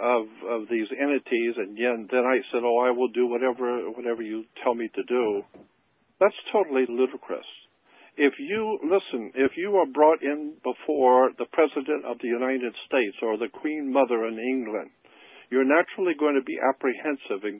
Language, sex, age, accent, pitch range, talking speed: English, male, 60-79, American, 125-160 Hz, 170 wpm